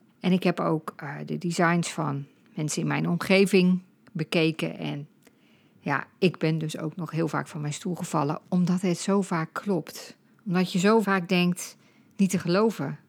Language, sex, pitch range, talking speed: Dutch, female, 170-215 Hz, 175 wpm